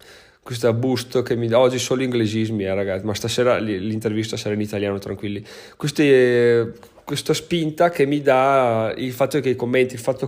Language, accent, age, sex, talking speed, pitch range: Italian, native, 30-49, male, 175 wpm, 110-130 Hz